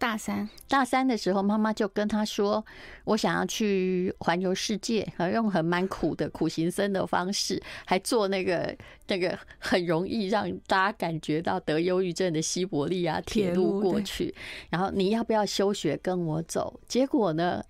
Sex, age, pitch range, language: female, 30-49, 180-230 Hz, Chinese